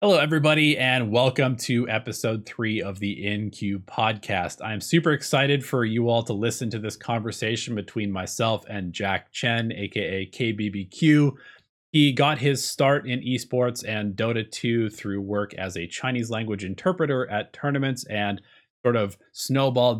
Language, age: English, 20-39